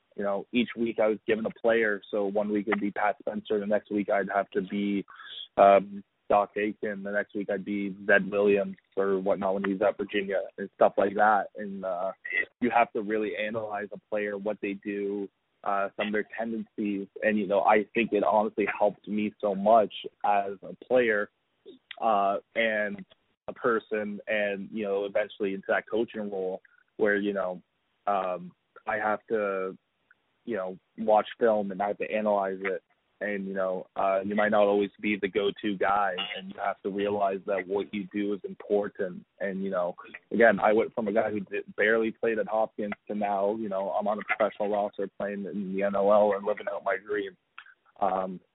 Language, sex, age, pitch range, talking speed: English, male, 20-39, 100-110 Hz, 200 wpm